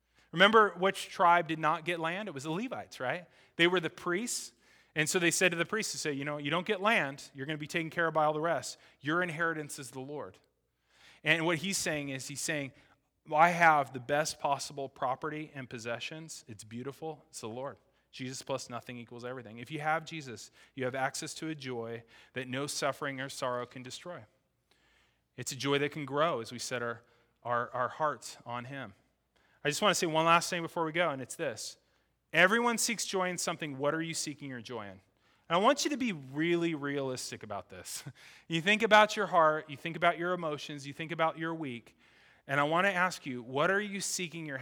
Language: English